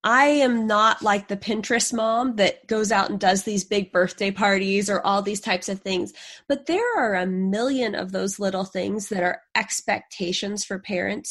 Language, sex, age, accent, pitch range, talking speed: English, female, 20-39, American, 190-250 Hz, 190 wpm